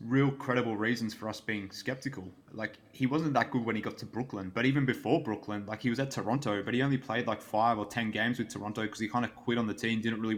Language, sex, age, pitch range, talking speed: English, male, 20-39, 105-125 Hz, 270 wpm